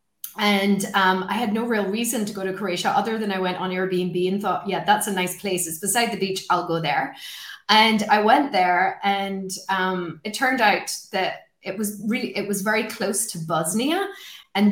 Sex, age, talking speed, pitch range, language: female, 20-39, 210 wpm, 190-235 Hz, English